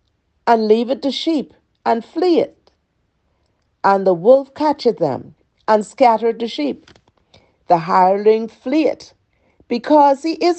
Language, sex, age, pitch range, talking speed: English, female, 50-69, 195-245 Hz, 135 wpm